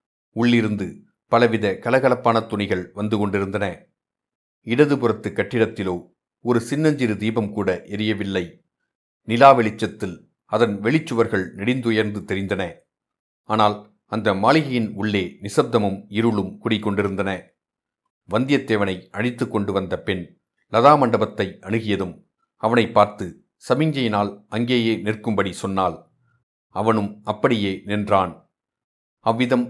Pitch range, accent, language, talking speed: 100-125 Hz, native, Tamil, 90 wpm